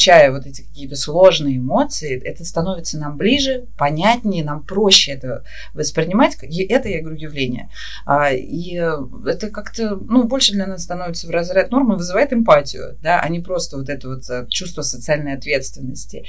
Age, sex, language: 30-49, female, Russian